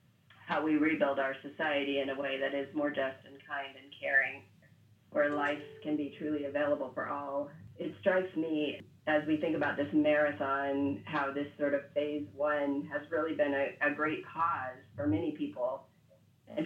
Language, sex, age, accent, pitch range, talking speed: English, female, 40-59, American, 140-160 Hz, 180 wpm